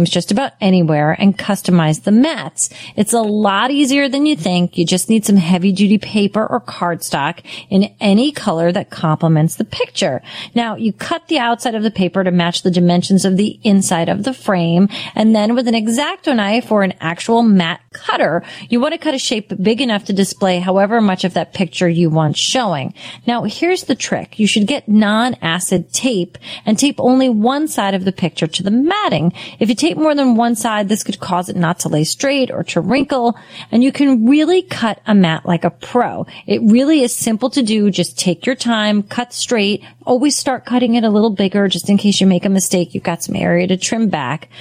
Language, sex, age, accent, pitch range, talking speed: English, female, 30-49, American, 180-250 Hz, 210 wpm